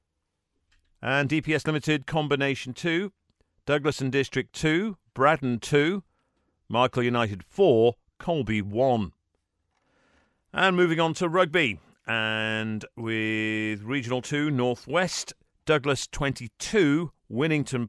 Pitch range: 110-150 Hz